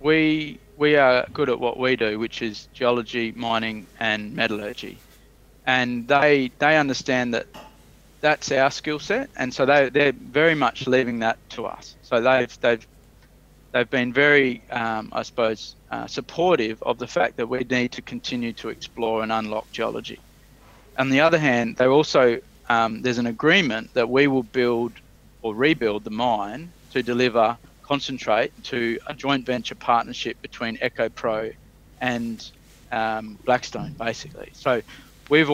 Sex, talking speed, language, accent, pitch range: male, 155 wpm, English, Australian, 115-130 Hz